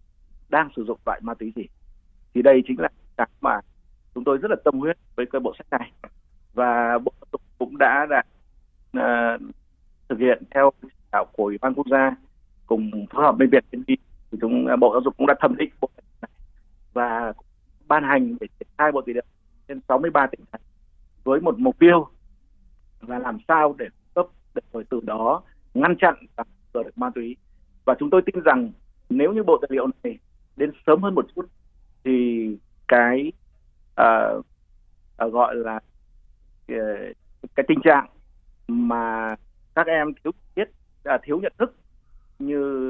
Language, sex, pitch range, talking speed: Vietnamese, male, 110-150 Hz, 170 wpm